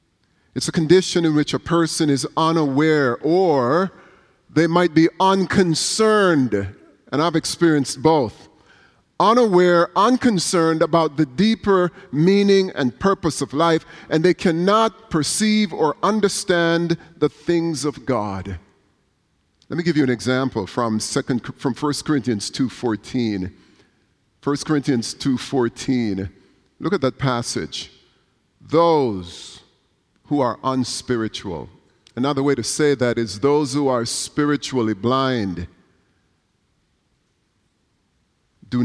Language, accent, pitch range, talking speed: English, American, 120-175 Hz, 115 wpm